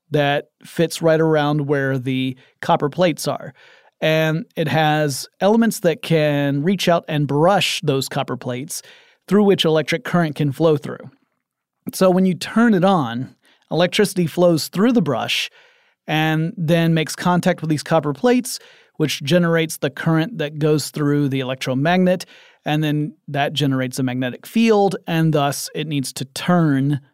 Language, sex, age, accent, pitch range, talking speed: English, male, 30-49, American, 145-180 Hz, 155 wpm